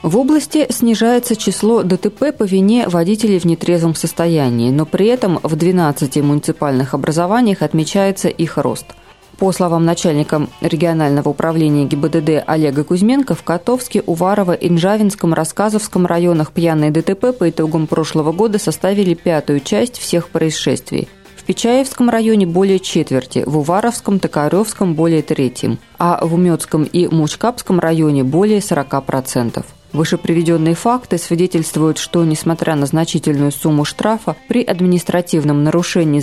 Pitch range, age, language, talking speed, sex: 155-195 Hz, 20-39, Russian, 125 wpm, female